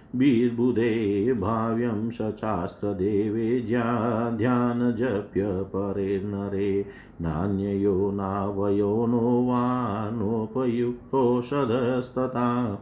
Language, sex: Hindi, male